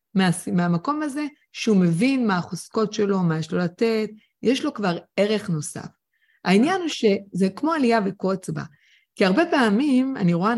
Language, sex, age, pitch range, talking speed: Hebrew, female, 30-49, 185-260 Hz, 155 wpm